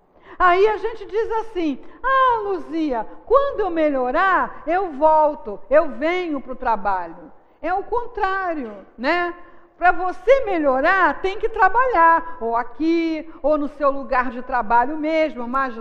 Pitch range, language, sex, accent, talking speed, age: 270-375 Hz, Portuguese, female, Brazilian, 140 wpm, 50-69